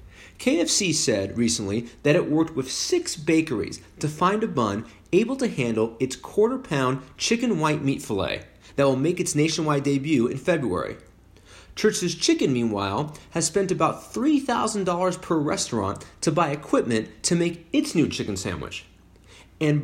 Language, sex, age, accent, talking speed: English, male, 30-49, American, 150 wpm